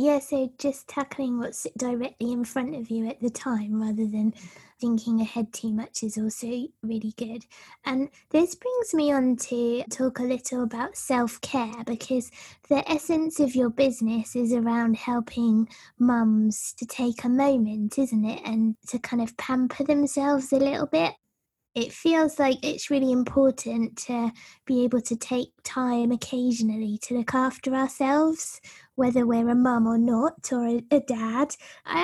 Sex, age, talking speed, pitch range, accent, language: female, 20-39, 165 wpm, 230-275 Hz, British, English